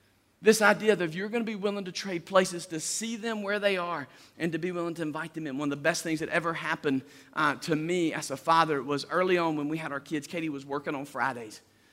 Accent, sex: American, male